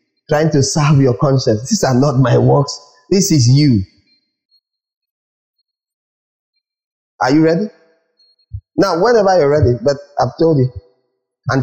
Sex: male